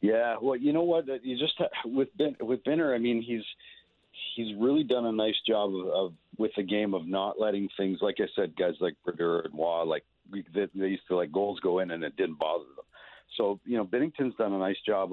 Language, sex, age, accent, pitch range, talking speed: English, male, 50-69, American, 95-125 Hz, 230 wpm